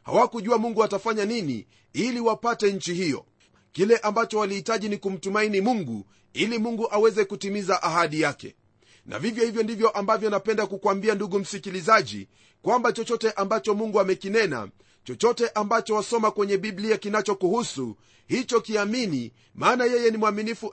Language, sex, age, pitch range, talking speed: Swahili, male, 40-59, 170-225 Hz, 135 wpm